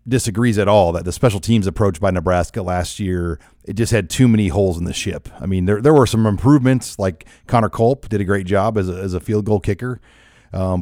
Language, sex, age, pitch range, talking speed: English, male, 40-59, 100-120 Hz, 240 wpm